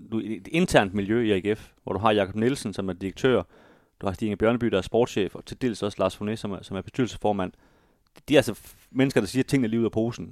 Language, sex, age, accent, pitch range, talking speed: Danish, male, 30-49, native, 100-120 Hz, 245 wpm